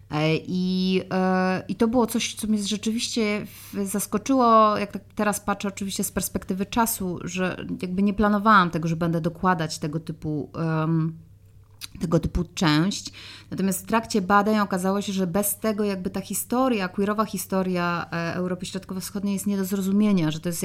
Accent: native